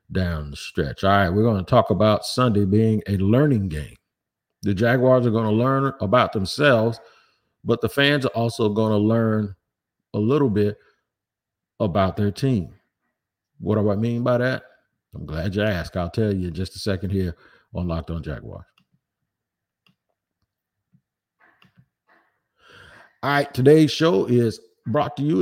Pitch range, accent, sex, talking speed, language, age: 100-130 Hz, American, male, 160 wpm, English, 50-69